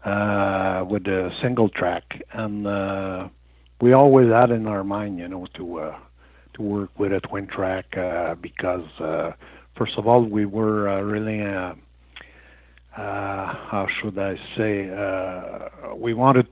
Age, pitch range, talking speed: 60-79, 95-115 Hz, 155 wpm